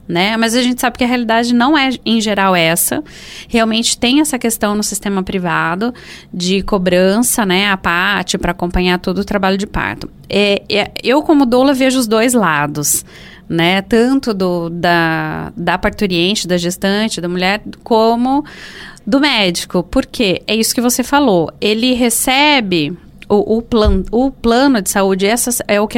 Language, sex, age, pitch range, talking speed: Portuguese, female, 20-39, 185-245 Hz, 165 wpm